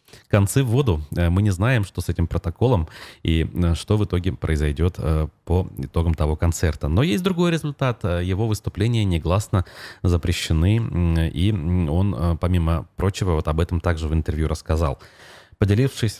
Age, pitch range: 30-49, 80-105 Hz